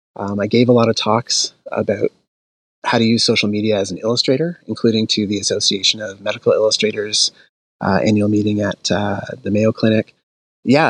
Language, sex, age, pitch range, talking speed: English, male, 30-49, 105-125 Hz, 175 wpm